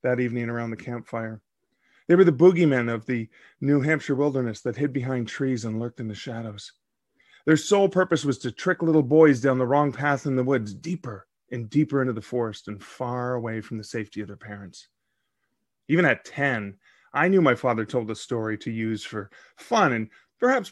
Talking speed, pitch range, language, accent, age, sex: 200 wpm, 115-175 Hz, English, American, 30-49, male